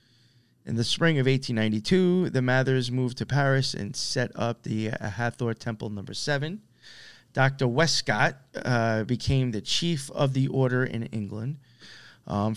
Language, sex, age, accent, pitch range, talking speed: English, male, 20-39, American, 110-135 Hz, 155 wpm